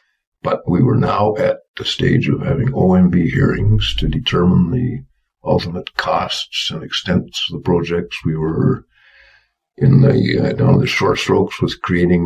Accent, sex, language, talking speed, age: American, male, English, 155 wpm, 60-79